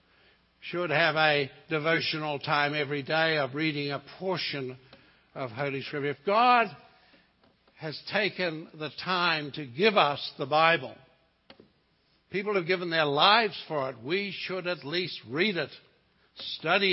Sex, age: male, 60-79